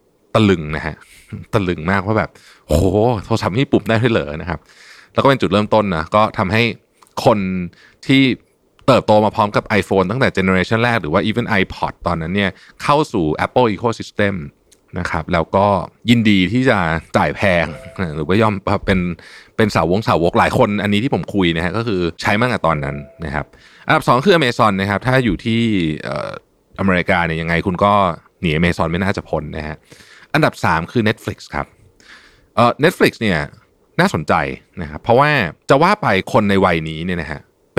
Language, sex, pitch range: Thai, male, 85-110 Hz